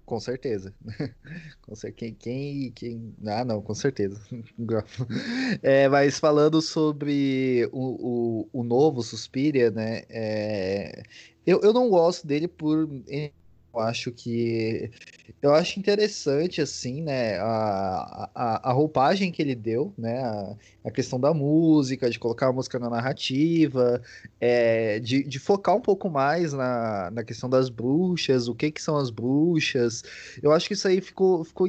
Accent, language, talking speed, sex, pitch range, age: Brazilian, Portuguese, 150 wpm, male, 115-150 Hz, 20-39